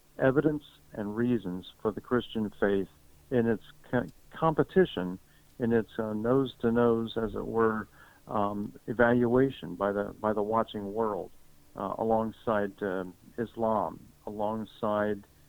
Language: English